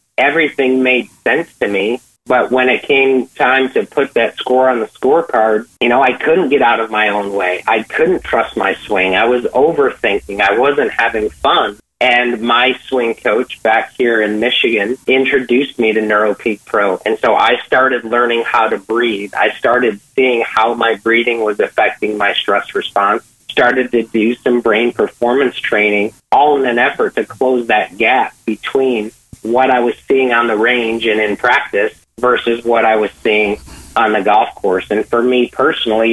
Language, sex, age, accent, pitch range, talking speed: English, male, 40-59, American, 110-130 Hz, 185 wpm